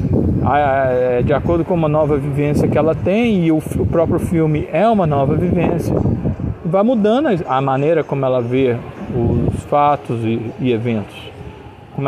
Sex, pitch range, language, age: male, 130-180 Hz, Portuguese, 40-59